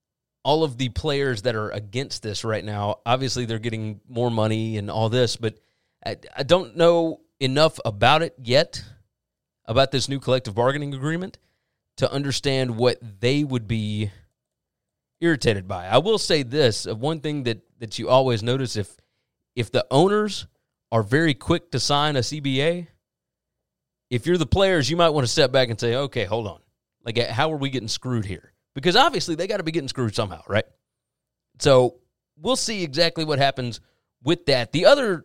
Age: 30-49